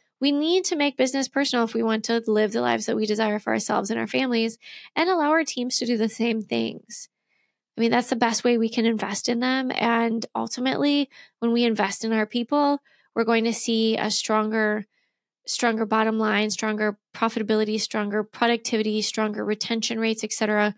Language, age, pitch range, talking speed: English, 20-39, 220-270 Hz, 190 wpm